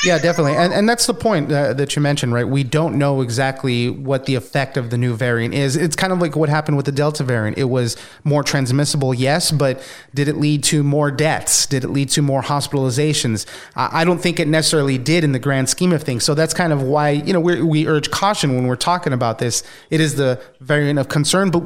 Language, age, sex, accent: English, 30-49, male, American